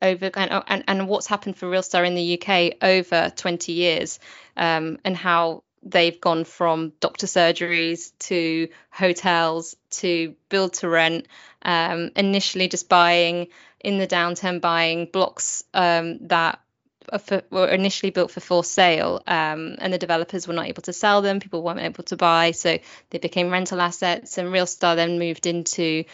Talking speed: 165 wpm